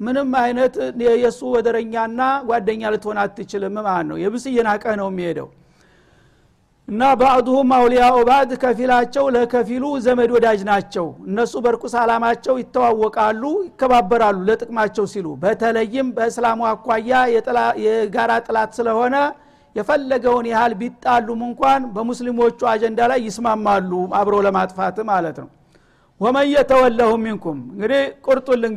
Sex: male